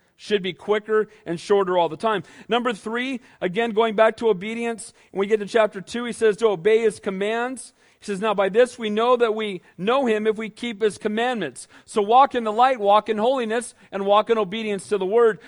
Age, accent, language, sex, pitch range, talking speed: 40-59, American, English, male, 200-240 Hz, 225 wpm